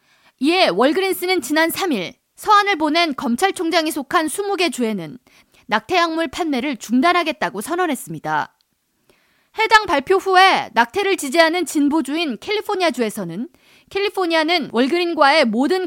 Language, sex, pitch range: Korean, female, 245-355 Hz